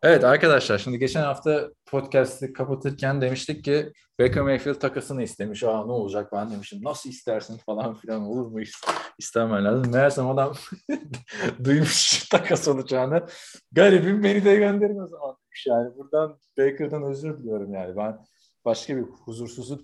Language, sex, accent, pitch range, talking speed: Turkish, male, native, 110-145 Hz, 135 wpm